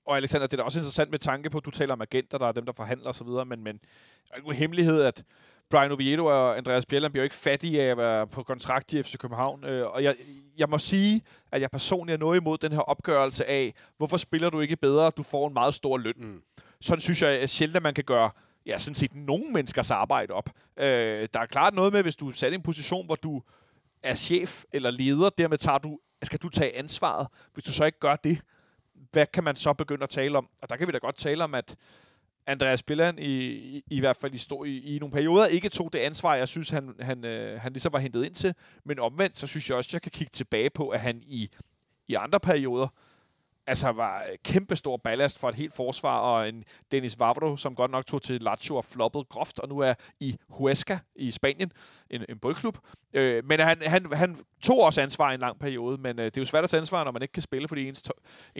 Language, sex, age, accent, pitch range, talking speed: Danish, male, 30-49, native, 130-165 Hz, 240 wpm